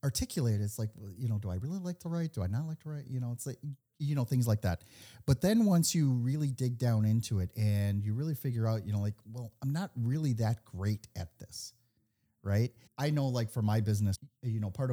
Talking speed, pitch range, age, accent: 245 wpm, 100-125 Hz, 40-59, American